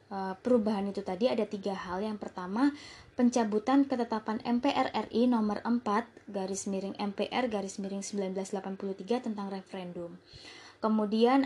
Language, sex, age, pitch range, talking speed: Indonesian, female, 20-39, 195-235 Hz, 120 wpm